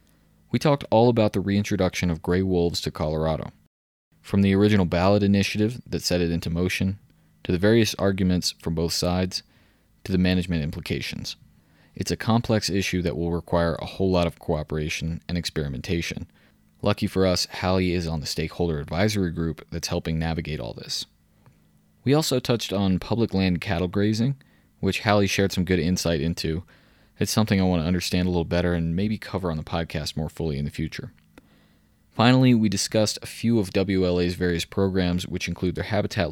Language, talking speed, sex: English, 180 wpm, male